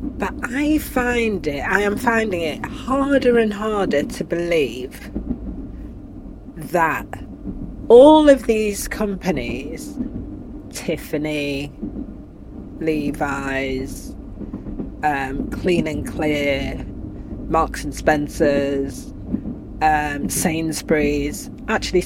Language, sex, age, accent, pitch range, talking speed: English, female, 40-59, British, 150-190 Hz, 80 wpm